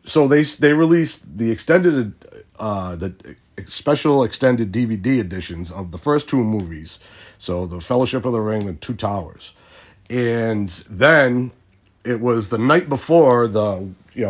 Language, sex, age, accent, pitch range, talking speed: English, male, 40-59, American, 95-120 Hz, 145 wpm